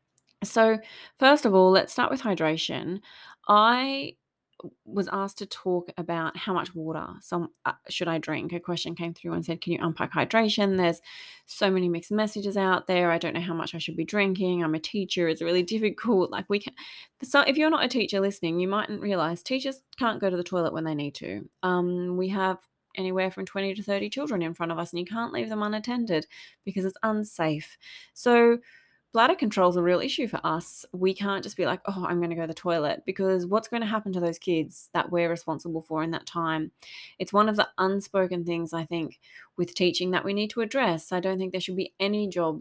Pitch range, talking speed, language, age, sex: 170-210 Hz, 225 wpm, English, 20-39, female